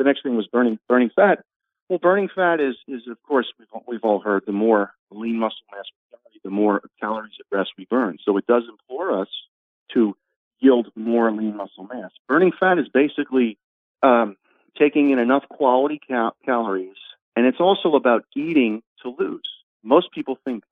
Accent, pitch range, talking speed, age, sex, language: American, 105-140 Hz, 190 wpm, 40-59, male, English